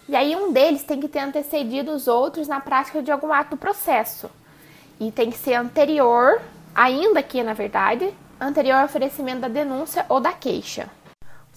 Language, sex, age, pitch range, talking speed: Portuguese, female, 20-39, 240-300 Hz, 180 wpm